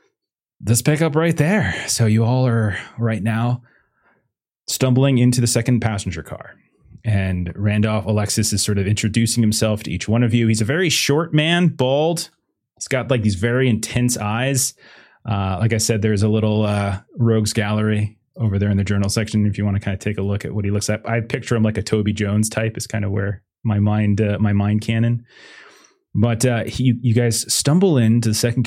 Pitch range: 105-125 Hz